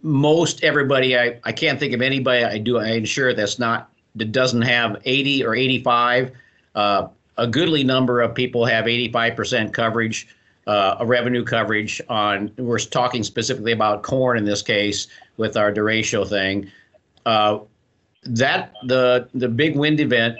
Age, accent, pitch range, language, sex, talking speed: 50-69, American, 105-125 Hz, English, male, 155 wpm